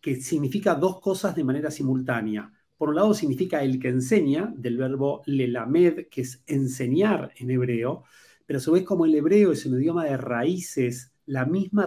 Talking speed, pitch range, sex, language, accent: 180 wpm, 130-165 Hz, male, Spanish, Argentinian